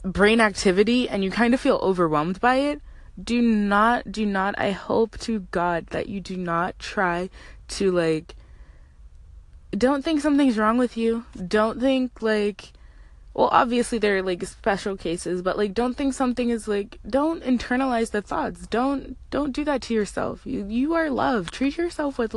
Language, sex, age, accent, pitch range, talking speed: English, female, 20-39, American, 190-255 Hz, 170 wpm